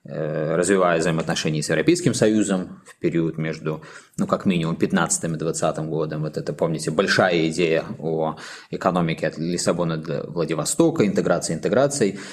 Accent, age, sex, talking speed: native, 20-39, male, 135 wpm